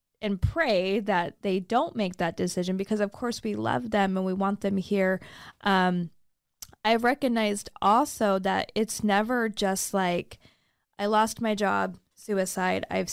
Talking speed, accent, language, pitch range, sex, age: 155 wpm, American, English, 185-215 Hz, female, 20-39